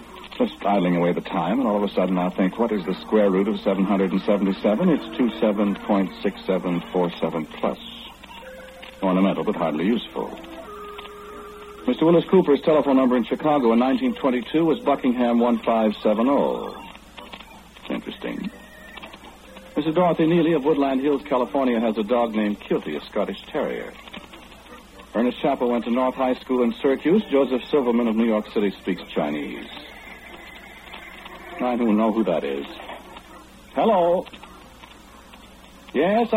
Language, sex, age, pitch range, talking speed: English, male, 60-79, 105-160 Hz, 130 wpm